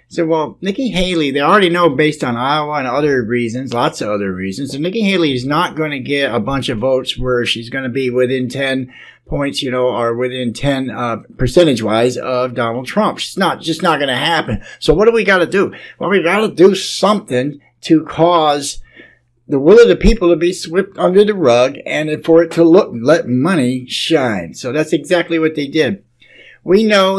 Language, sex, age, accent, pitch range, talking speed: English, male, 60-79, American, 125-170 Hz, 215 wpm